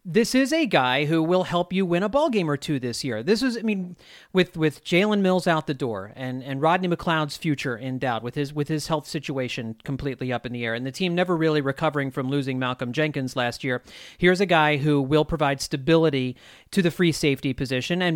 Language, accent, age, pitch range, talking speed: English, American, 40-59, 145-190 Hz, 230 wpm